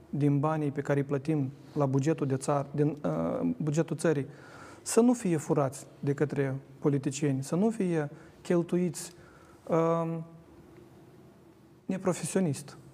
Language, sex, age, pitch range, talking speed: Romanian, male, 30-49, 140-170 Hz, 125 wpm